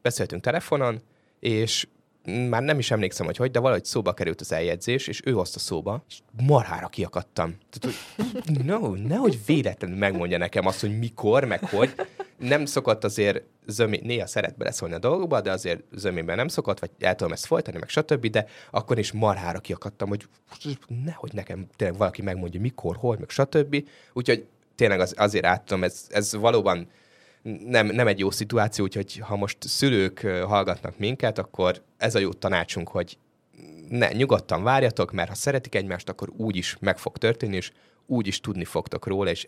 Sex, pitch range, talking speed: male, 95-125 Hz, 170 wpm